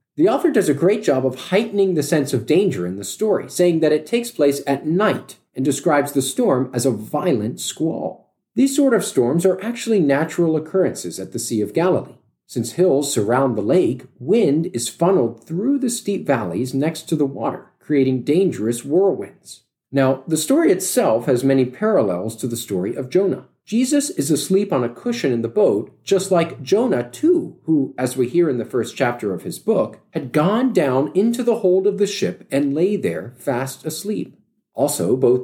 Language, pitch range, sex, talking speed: English, 135-200 Hz, male, 195 wpm